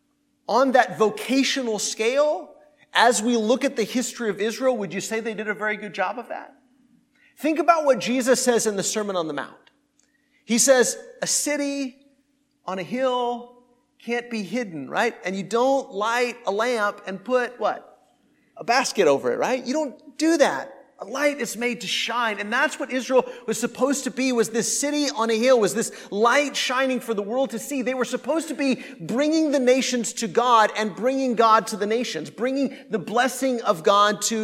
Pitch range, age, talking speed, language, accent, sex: 225-275 Hz, 30-49, 200 wpm, English, American, male